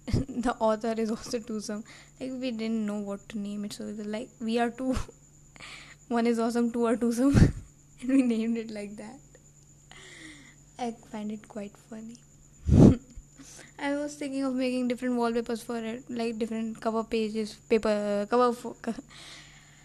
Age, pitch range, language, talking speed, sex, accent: 20-39, 215-245 Hz, English, 155 wpm, female, Indian